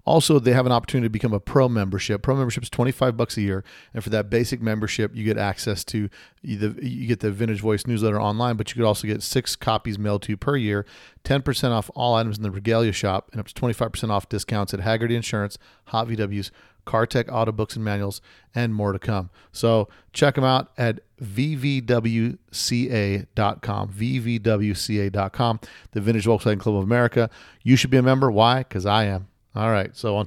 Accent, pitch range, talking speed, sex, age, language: American, 105-120 Hz, 195 wpm, male, 40-59, English